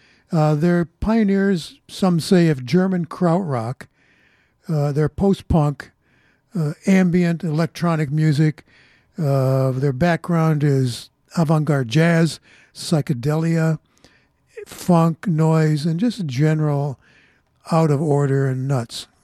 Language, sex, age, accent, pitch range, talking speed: English, male, 60-79, American, 145-180 Hz, 85 wpm